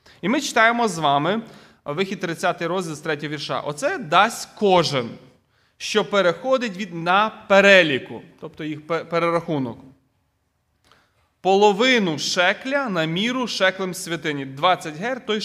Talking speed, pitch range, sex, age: 120 wpm, 155-210 Hz, male, 30-49